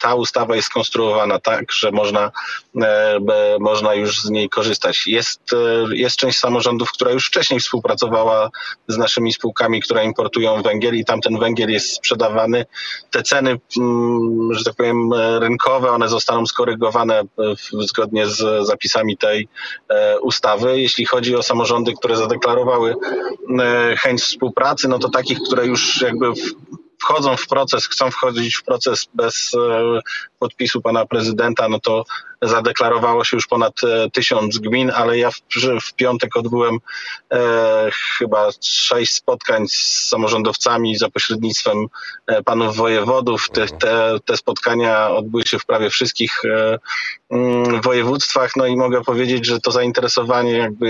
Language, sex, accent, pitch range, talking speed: Polish, male, native, 110-125 Hz, 135 wpm